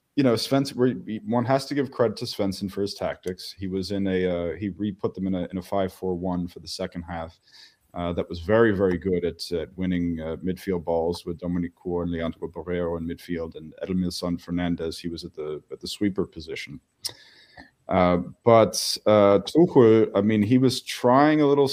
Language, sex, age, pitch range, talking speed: English, male, 30-49, 90-105 Hz, 200 wpm